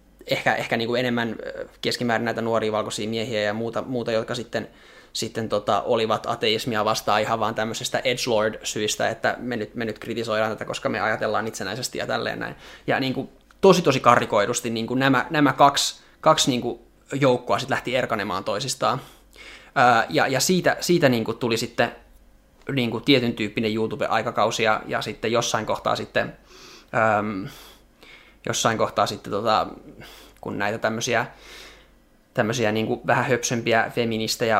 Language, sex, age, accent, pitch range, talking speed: Finnish, male, 20-39, native, 110-120 Hz, 130 wpm